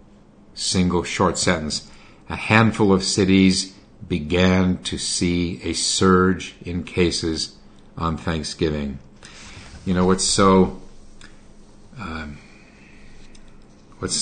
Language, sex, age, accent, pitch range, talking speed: English, male, 50-69, American, 85-95 Hz, 95 wpm